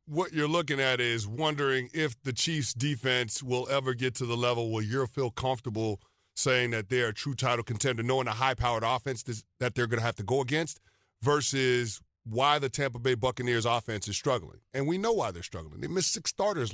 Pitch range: 115-145 Hz